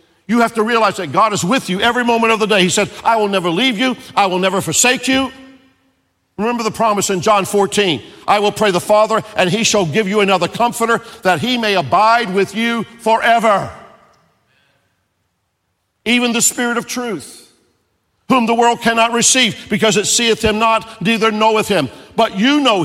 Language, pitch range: English, 175-235 Hz